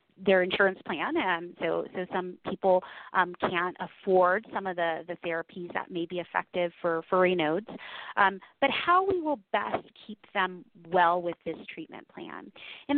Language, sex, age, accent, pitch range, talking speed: English, female, 30-49, American, 185-235 Hz, 175 wpm